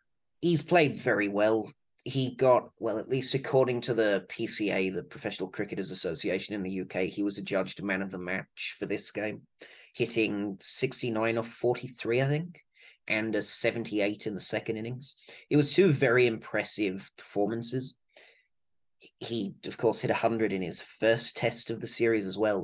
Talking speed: 165 wpm